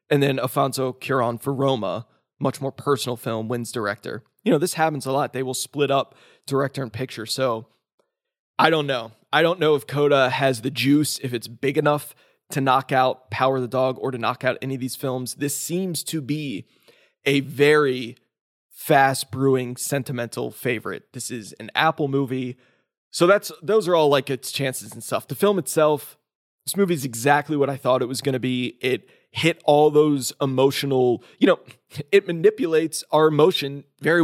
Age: 20-39